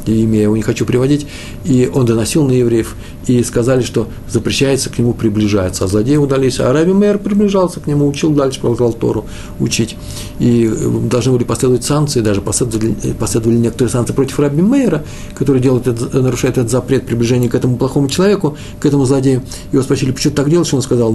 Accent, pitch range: native, 105-135 Hz